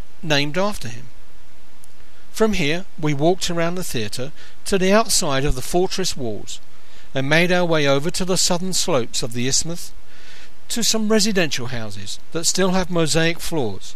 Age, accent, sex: 50-69, British, male